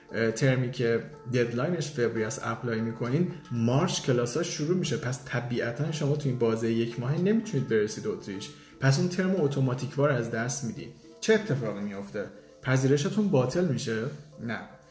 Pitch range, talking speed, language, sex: 115-145 Hz, 140 wpm, Persian, male